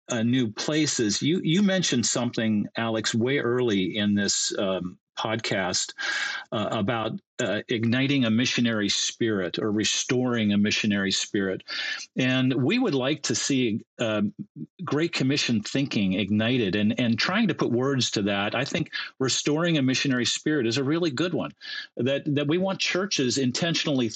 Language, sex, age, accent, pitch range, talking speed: English, male, 50-69, American, 110-145 Hz, 155 wpm